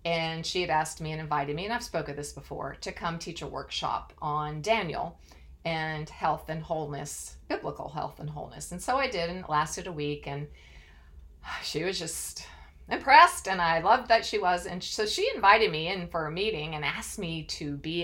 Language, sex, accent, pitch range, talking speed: English, female, American, 145-195 Hz, 210 wpm